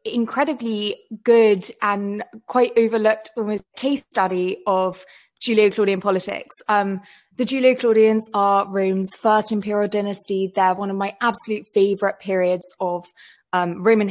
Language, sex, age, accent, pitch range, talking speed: English, female, 20-39, British, 195-230 Hz, 120 wpm